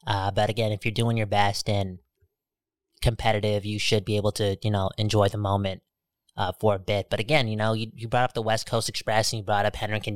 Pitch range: 110-145 Hz